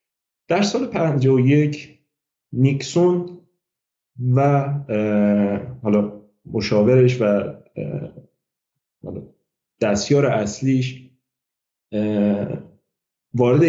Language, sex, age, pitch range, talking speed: Persian, male, 40-59, 110-150 Hz, 55 wpm